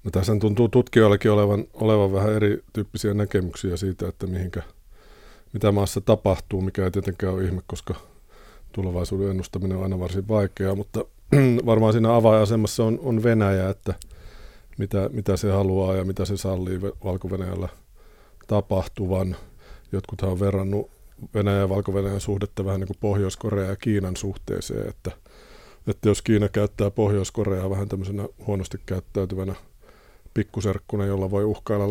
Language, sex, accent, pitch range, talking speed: Finnish, male, native, 95-105 Hz, 135 wpm